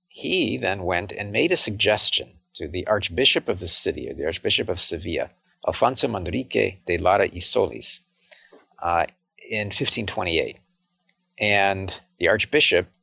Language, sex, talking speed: English, male, 140 wpm